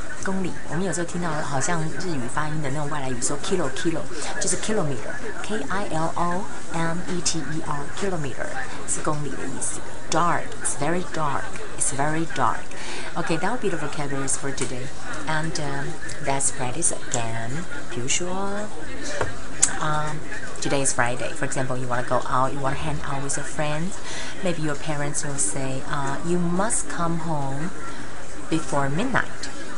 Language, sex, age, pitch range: Chinese, female, 30-49, 140-165 Hz